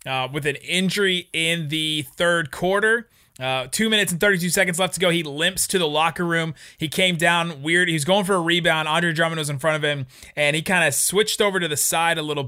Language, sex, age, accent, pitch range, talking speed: English, male, 20-39, American, 145-180 Hz, 240 wpm